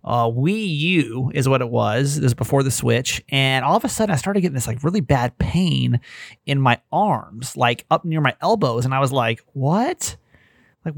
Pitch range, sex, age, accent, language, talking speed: 125-180 Hz, male, 30-49, American, English, 215 wpm